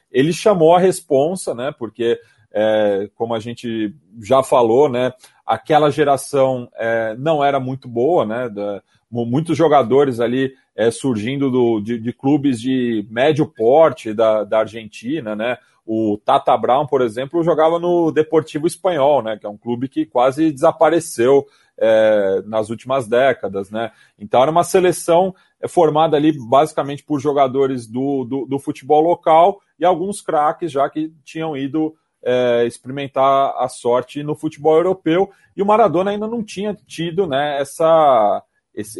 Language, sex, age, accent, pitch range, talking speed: Portuguese, male, 30-49, Brazilian, 115-155 Hz, 140 wpm